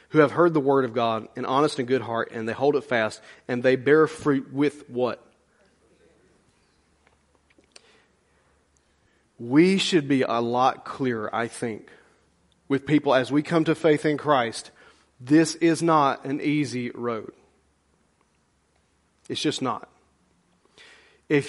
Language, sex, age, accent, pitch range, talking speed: English, male, 40-59, American, 120-170 Hz, 140 wpm